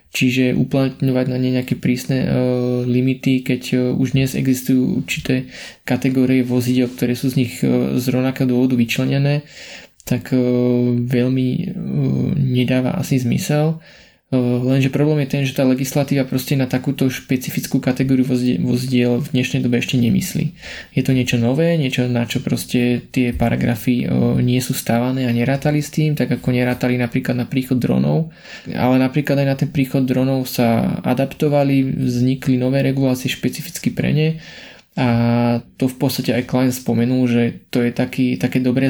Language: Slovak